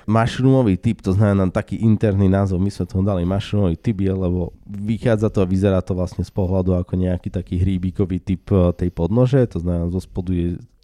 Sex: male